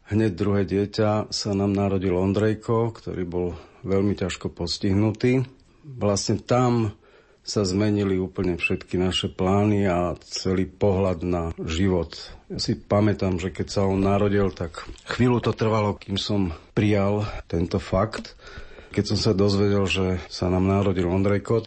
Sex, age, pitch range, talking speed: male, 40-59, 90-105 Hz, 140 wpm